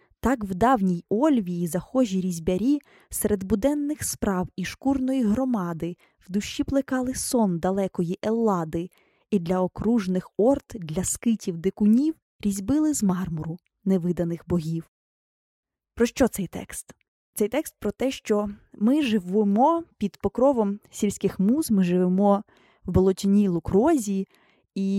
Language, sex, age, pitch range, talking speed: Ukrainian, female, 20-39, 190-240 Hz, 120 wpm